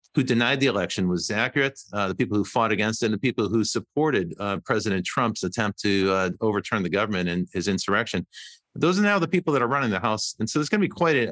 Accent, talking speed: American, 250 wpm